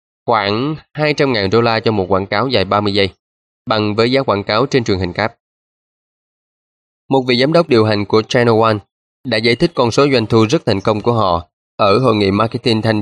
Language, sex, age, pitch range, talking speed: Vietnamese, male, 20-39, 100-125 Hz, 210 wpm